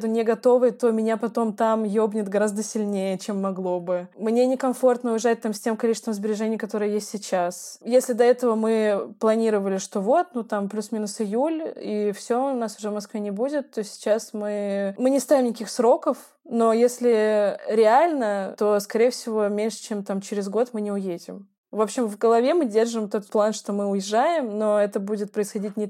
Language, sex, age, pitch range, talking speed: Russian, female, 20-39, 205-235 Hz, 185 wpm